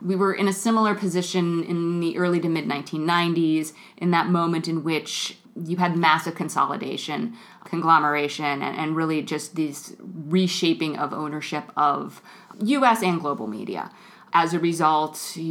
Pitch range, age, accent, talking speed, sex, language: 155-190 Hz, 30-49, American, 145 wpm, female, English